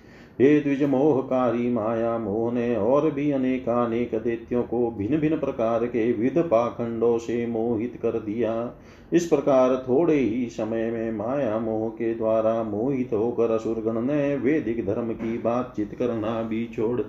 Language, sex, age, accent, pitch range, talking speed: Hindi, male, 40-59, native, 115-130 Hz, 145 wpm